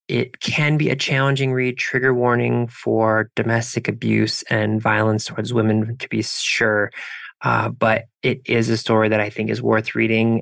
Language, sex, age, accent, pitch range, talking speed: English, male, 20-39, American, 110-125 Hz, 175 wpm